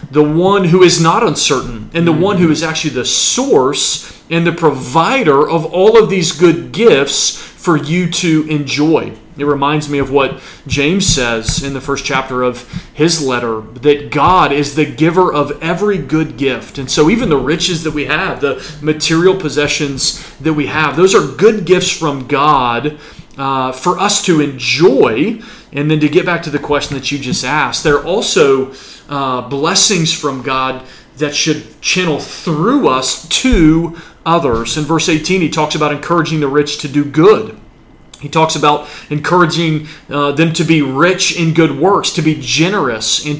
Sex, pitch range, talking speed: male, 140-165 Hz, 180 wpm